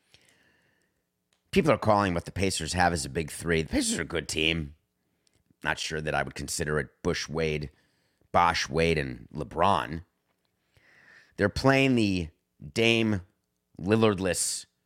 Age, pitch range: 30-49, 85-120 Hz